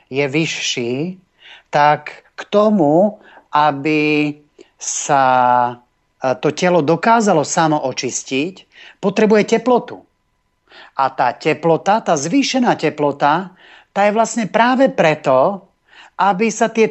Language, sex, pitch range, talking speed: Slovak, male, 150-215 Hz, 100 wpm